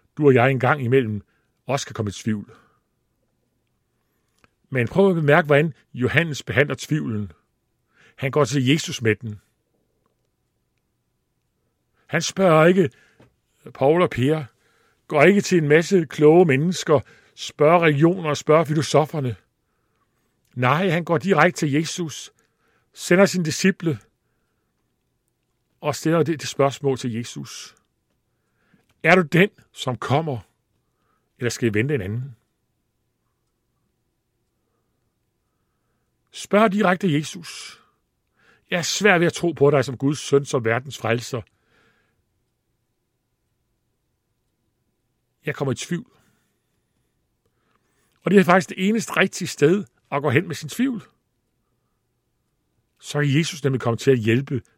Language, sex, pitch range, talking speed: Danish, male, 120-160 Hz, 125 wpm